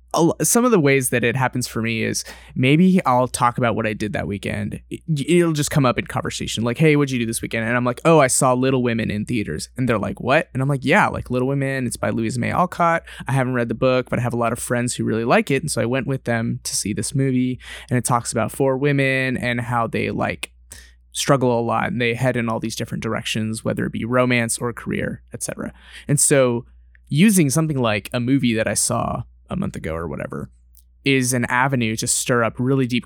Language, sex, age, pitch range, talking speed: English, male, 20-39, 110-130 Hz, 245 wpm